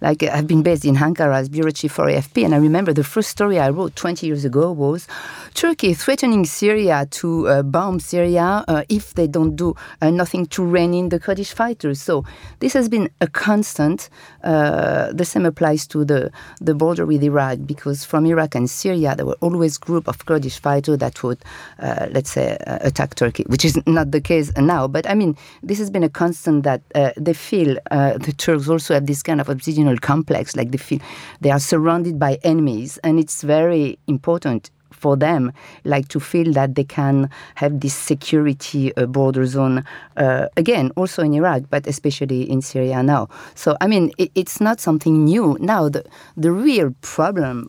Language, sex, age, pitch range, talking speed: English, female, 40-59, 140-170 Hz, 195 wpm